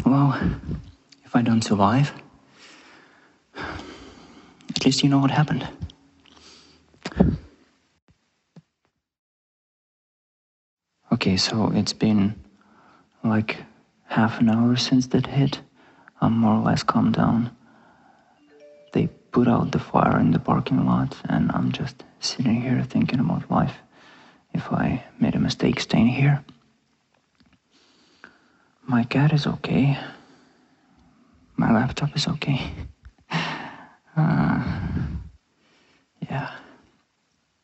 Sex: male